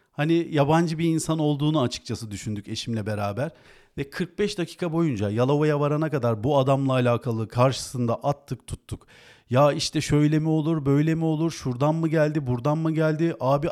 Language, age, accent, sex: Turkish, 50-69, native, male